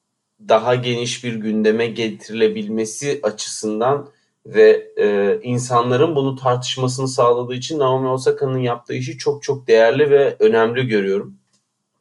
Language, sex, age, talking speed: Turkish, male, 30-49, 115 wpm